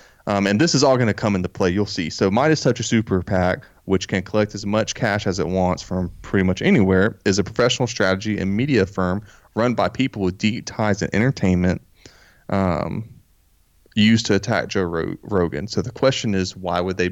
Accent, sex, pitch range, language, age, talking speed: American, male, 90-110 Hz, English, 30-49, 210 wpm